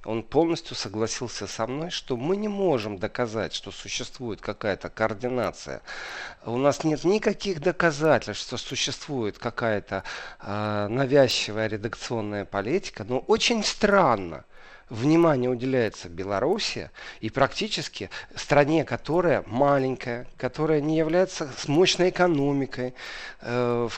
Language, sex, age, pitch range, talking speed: Russian, male, 40-59, 110-145 Hz, 105 wpm